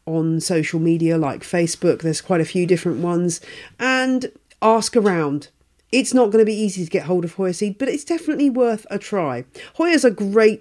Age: 40-59